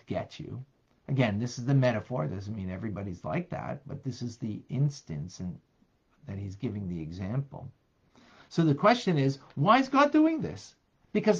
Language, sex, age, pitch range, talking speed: English, male, 50-69, 110-175 Hz, 180 wpm